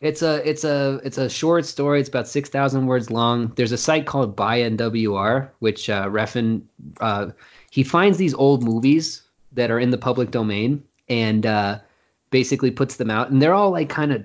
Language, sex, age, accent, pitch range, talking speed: English, male, 20-39, American, 110-135 Hz, 205 wpm